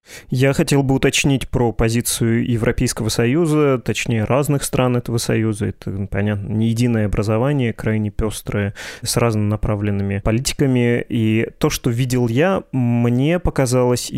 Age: 20-39